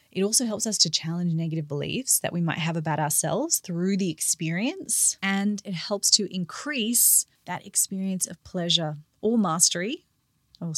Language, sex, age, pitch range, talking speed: English, female, 20-39, 170-210 Hz, 165 wpm